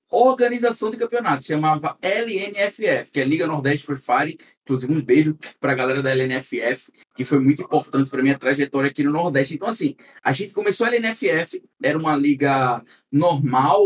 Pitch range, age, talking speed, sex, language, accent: 135-215 Hz, 20-39, 170 wpm, male, Portuguese, Brazilian